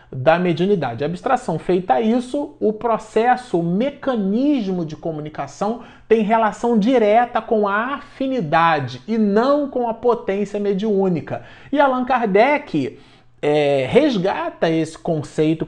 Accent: Brazilian